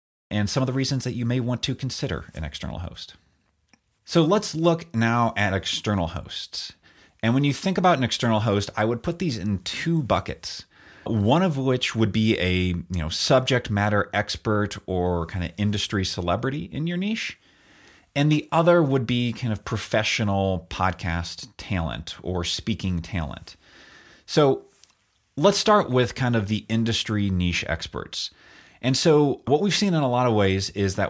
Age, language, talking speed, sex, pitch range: 30-49, English, 175 wpm, male, 95-125 Hz